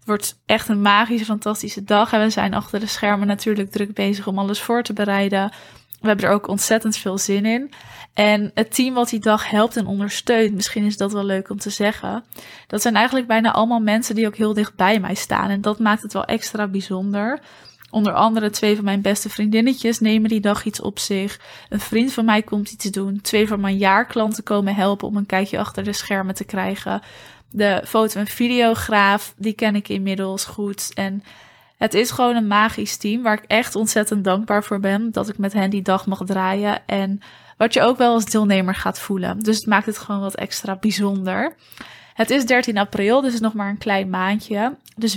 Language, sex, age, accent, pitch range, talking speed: Dutch, female, 20-39, Dutch, 200-225 Hz, 210 wpm